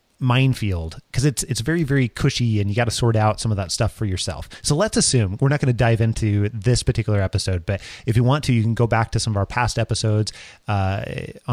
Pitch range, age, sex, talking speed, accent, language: 105-130 Hz, 30-49, male, 245 wpm, American, English